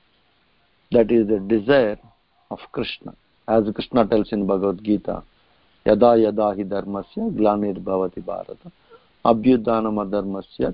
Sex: male